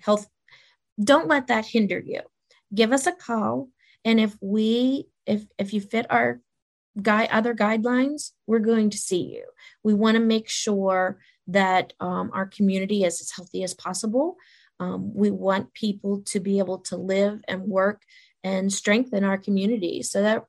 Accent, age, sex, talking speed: American, 30-49, female, 165 wpm